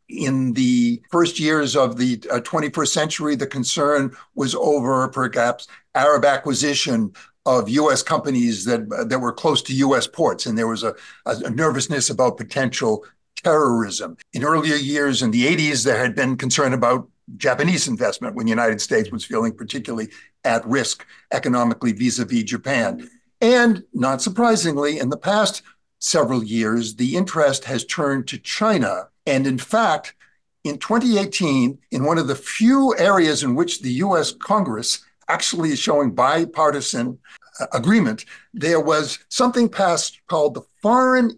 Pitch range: 130-195 Hz